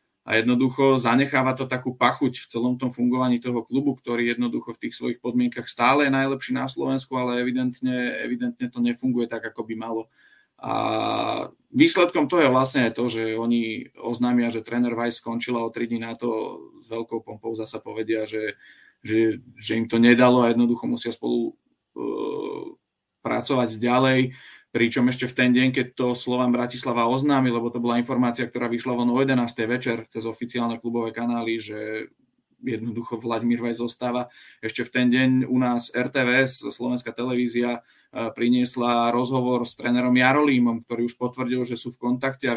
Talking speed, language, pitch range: 170 wpm, Czech, 115-125 Hz